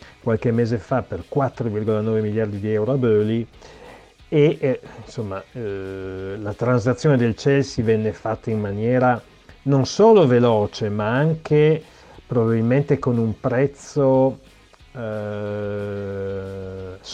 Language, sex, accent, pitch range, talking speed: Italian, male, native, 105-130 Hz, 110 wpm